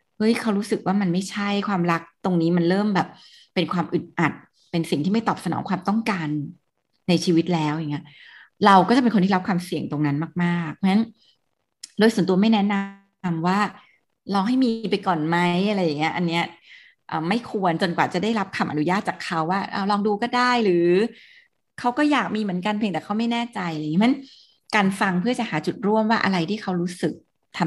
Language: Thai